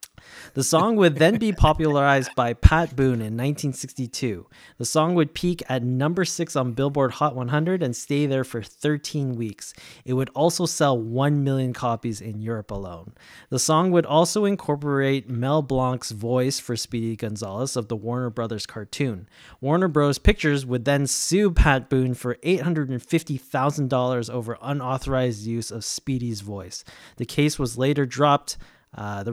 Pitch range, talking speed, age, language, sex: 120-150 Hz, 160 wpm, 20-39, English, male